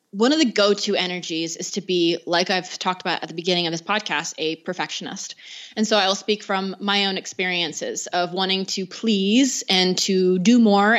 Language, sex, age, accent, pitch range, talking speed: English, female, 20-39, American, 185-235 Hz, 200 wpm